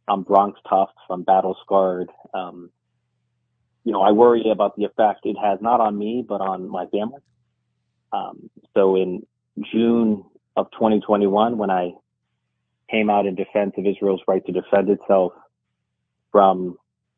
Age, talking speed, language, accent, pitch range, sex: 30-49, 140 wpm, English, American, 90-110 Hz, male